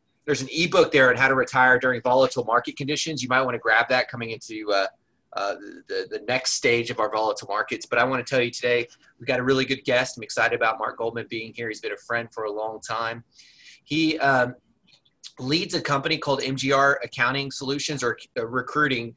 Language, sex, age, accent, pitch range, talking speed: English, male, 30-49, American, 130-160 Hz, 220 wpm